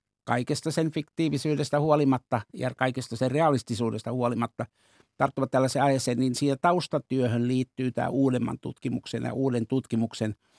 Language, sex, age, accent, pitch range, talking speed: Finnish, male, 60-79, native, 120-140 Hz, 125 wpm